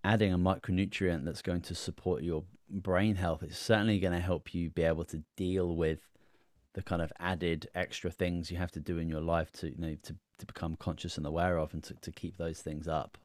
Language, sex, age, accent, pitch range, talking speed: English, male, 30-49, British, 80-95 Hz, 230 wpm